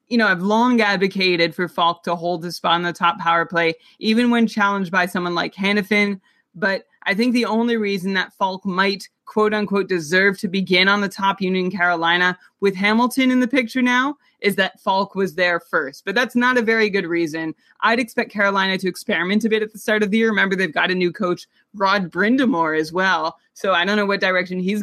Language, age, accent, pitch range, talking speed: English, 20-39, American, 175-220 Hz, 220 wpm